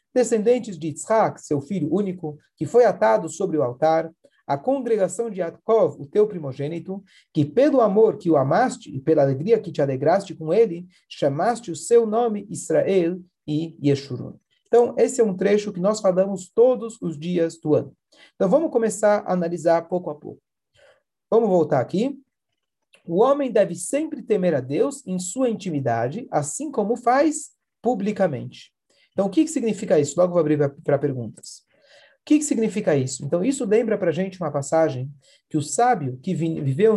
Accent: Brazilian